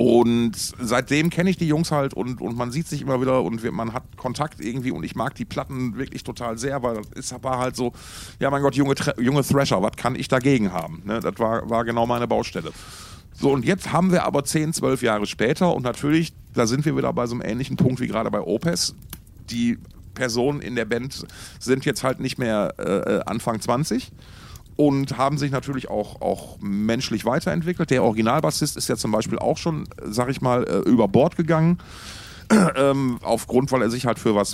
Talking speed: 210 wpm